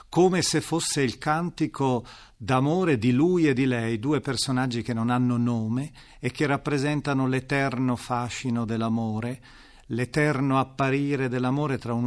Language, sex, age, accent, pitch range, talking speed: Italian, male, 40-59, native, 120-145 Hz, 140 wpm